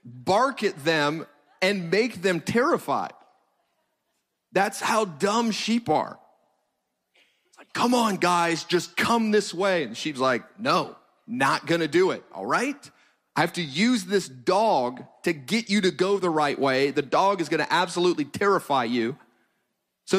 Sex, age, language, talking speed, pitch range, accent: male, 30-49, English, 160 wpm, 165-215 Hz, American